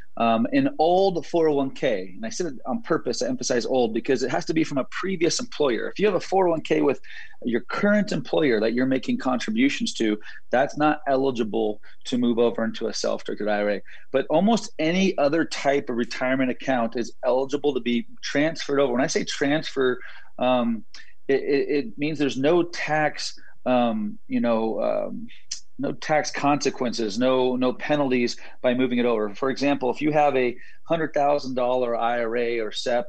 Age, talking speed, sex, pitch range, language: 30-49, 175 wpm, male, 120-150 Hz, English